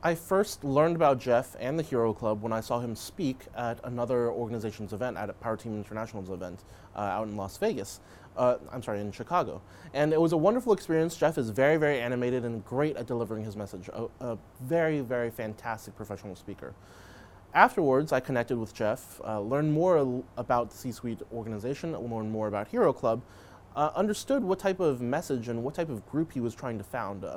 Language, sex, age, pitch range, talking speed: English, male, 20-39, 105-140 Hz, 200 wpm